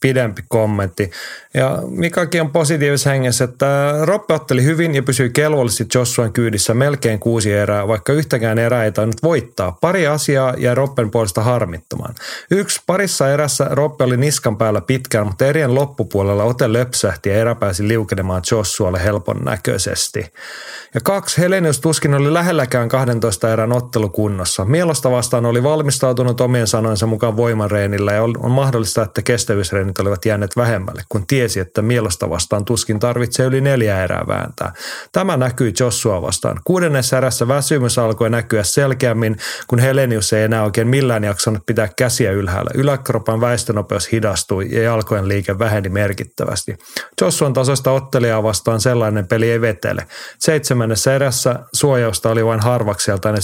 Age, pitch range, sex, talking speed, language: 30-49, 110-135 Hz, male, 145 wpm, Finnish